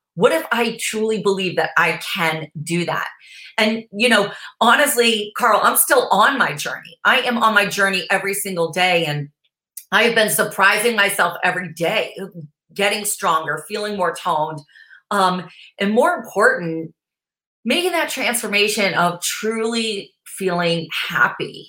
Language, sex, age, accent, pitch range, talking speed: English, female, 40-59, American, 170-220 Hz, 145 wpm